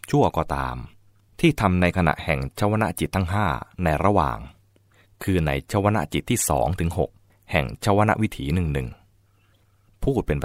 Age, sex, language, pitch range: 20-39, male, English, 80-100 Hz